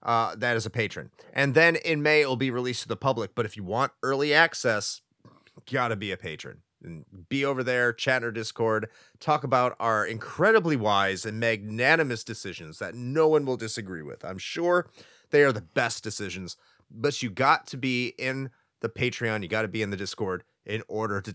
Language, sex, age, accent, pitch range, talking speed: English, male, 30-49, American, 110-150 Hz, 205 wpm